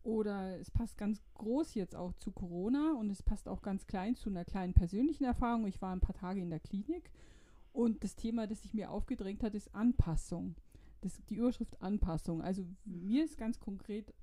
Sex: female